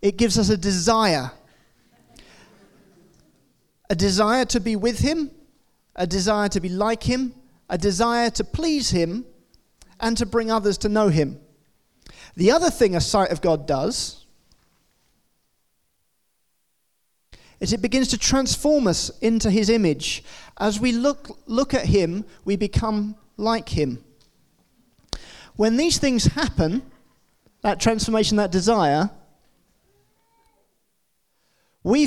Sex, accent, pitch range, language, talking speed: male, British, 185-245 Hz, English, 120 wpm